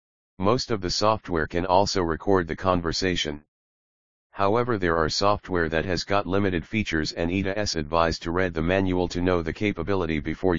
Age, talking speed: 40-59, 170 wpm